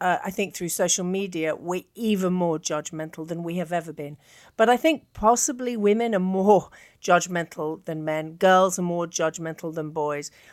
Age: 40-59